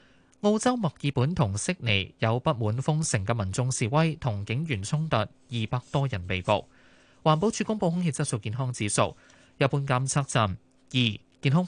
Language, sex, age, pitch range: Chinese, male, 20-39, 120-160 Hz